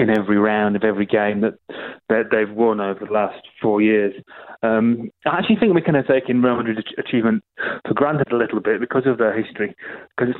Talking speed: 215 wpm